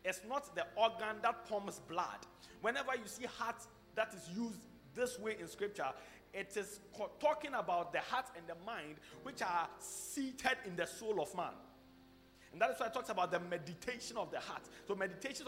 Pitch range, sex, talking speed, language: 170-245 Hz, male, 190 wpm, English